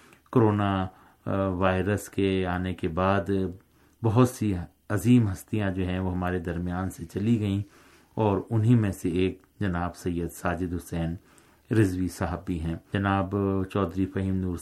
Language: Urdu